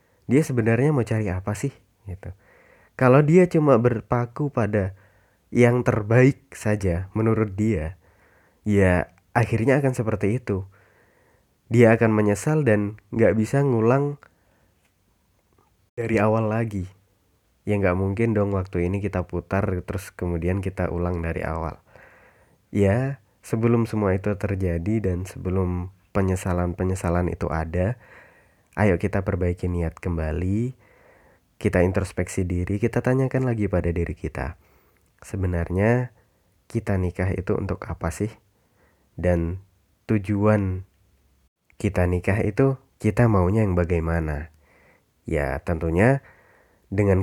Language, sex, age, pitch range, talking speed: Indonesian, male, 20-39, 90-110 Hz, 115 wpm